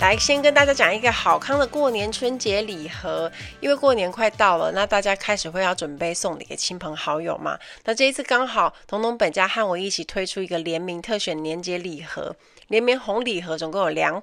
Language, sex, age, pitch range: Chinese, female, 30-49, 175-230 Hz